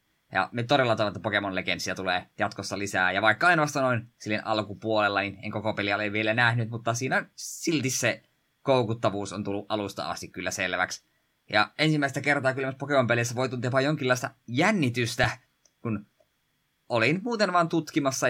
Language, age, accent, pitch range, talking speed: Finnish, 20-39, native, 105-140 Hz, 155 wpm